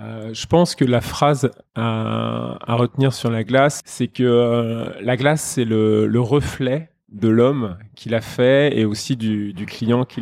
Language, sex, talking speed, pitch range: French, male, 190 wpm, 110-130 Hz